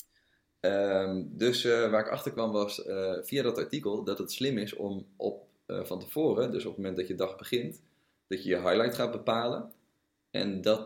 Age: 20-39